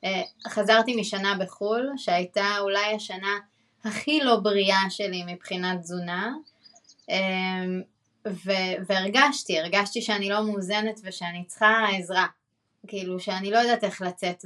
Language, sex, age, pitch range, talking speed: Hebrew, female, 20-39, 180-215 Hz, 110 wpm